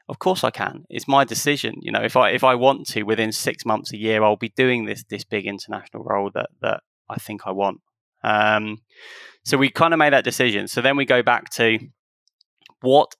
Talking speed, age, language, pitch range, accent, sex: 225 wpm, 20-39, English, 105-130 Hz, British, male